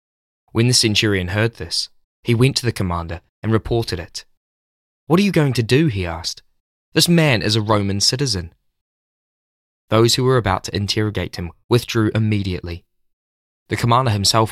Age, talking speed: 20-39, 160 wpm